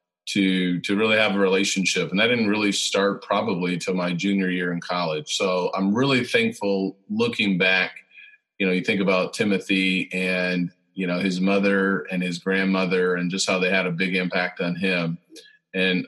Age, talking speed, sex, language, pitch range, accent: 30-49, 185 wpm, male, English, 95-105 Hz, American